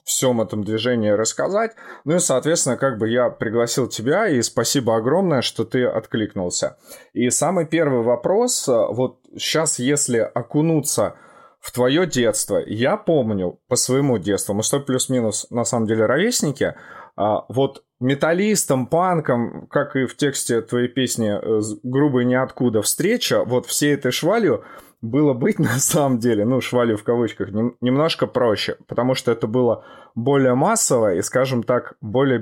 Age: 20-39